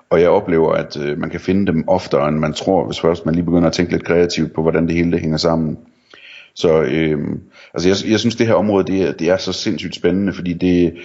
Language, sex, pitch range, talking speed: Danish, male, 80-90 Hz, 240 wpm